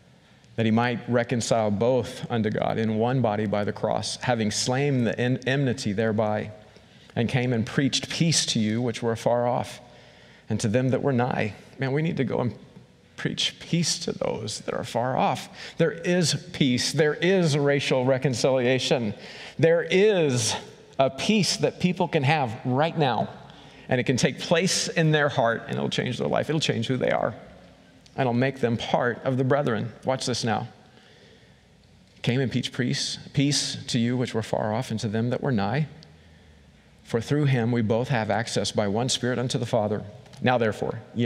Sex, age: male, 40-59